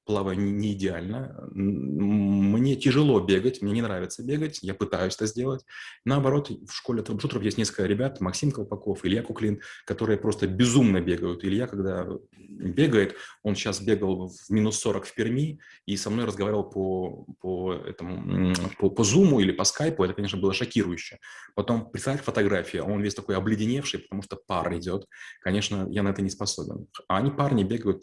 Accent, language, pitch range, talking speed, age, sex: native, Russian, 95-120 Hz, 165 wpm, 20-39, male